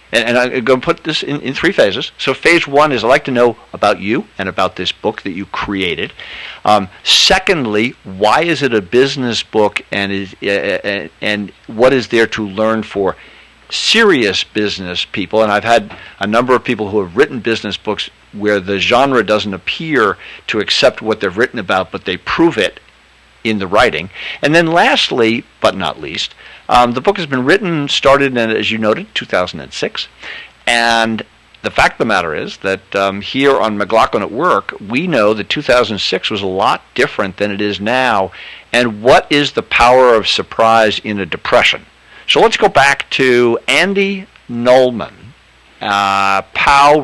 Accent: American